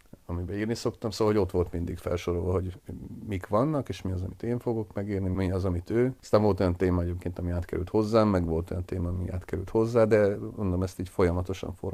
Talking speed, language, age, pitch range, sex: 215 wpm, Hungarian, 40-59, 90-100 Hz, male